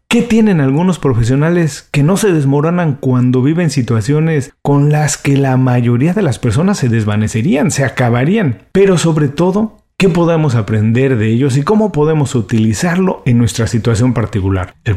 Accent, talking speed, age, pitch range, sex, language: Mexican, 160 wpm, 40-59, 110-155 Hz, male, Spanish